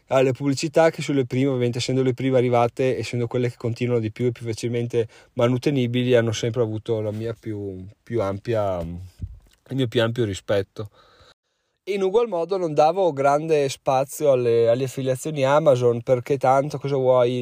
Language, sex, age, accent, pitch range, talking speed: Italian, male, 20-39, native, 125-155 Hz, 175 wpm